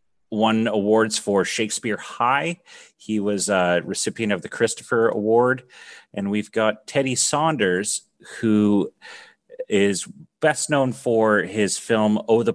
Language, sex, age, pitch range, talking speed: English, male, 30-49, 90-110 Hz, 130 wpm